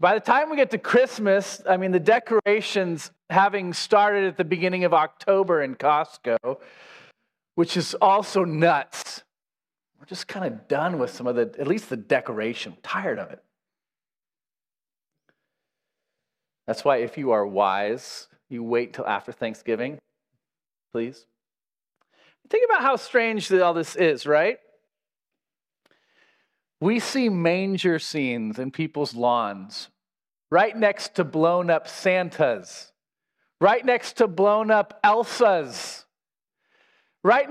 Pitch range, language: 165-225 Hz, English